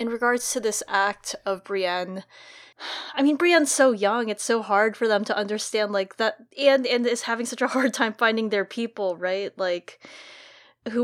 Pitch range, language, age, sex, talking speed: 195-235 Hz, English, 20-39, female, 190 wpm